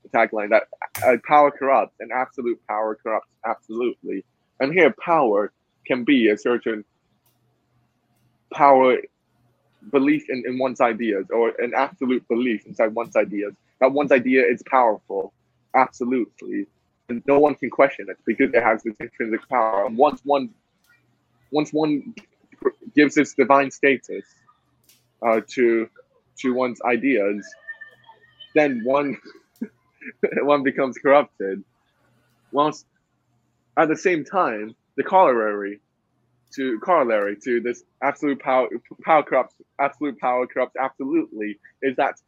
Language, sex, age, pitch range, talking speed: English, male, 20-39, 120-155 Hz, 125 wpm